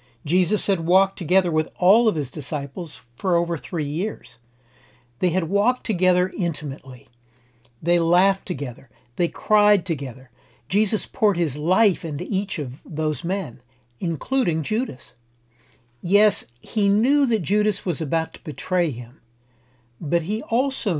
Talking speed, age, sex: 135 wpm, 60-79, male